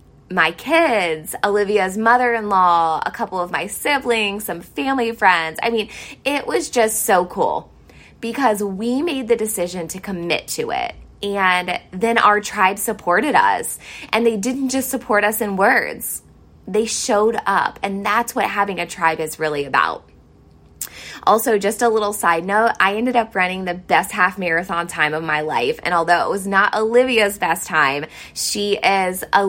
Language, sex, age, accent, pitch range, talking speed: English, female, 20-39, American, 170-220 Hz, 170 wpm